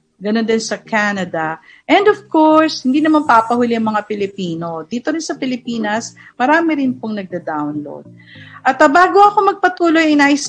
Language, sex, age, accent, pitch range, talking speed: Filipino, female, 50-69, native, 205-275 Hz, 155 wpm